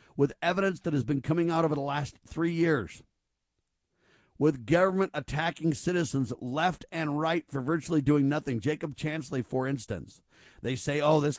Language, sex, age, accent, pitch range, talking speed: English, male, 50-69, American, 140-170 Hz, 165 wpm